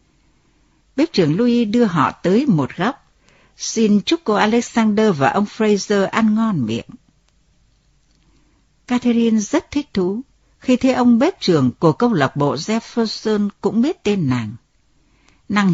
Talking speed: 140 wpm